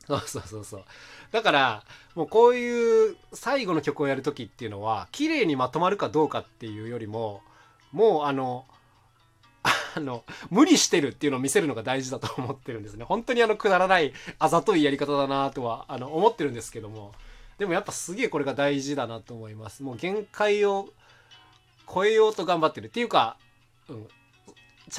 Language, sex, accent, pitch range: Japanese, male, native, 115-160 Hz